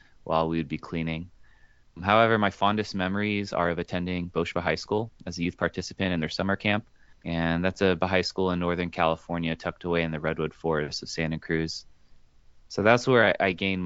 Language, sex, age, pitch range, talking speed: English, male, 20-39, 80-95 Hz, 200 wpm